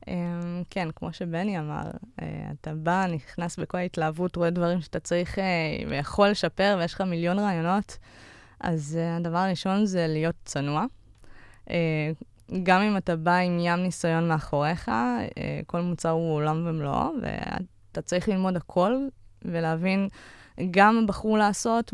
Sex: female